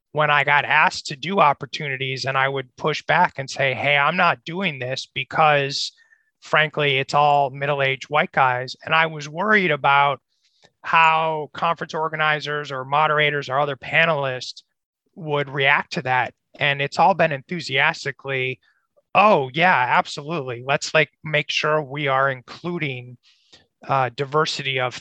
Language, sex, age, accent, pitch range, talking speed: English, male, 30-49, American, 135-155 Hz, 145 wpm